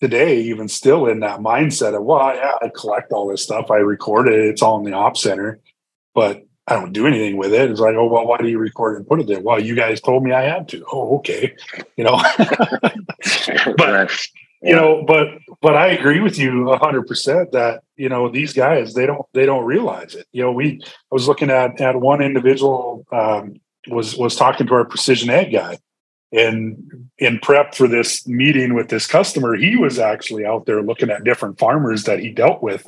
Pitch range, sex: 115-135 Hz, male